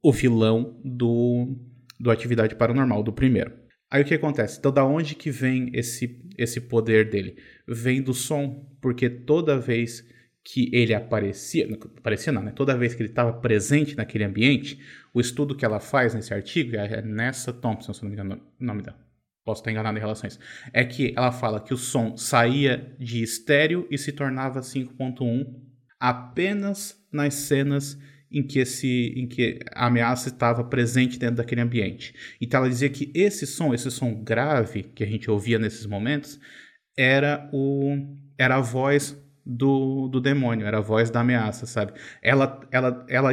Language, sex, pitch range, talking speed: Portuguese, male, 115-140 Hz, 165 wpm